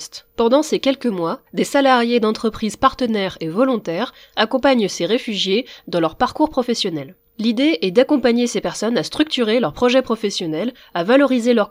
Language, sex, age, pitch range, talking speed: French, female, 20-39, 195-260 Hz, 155 wpm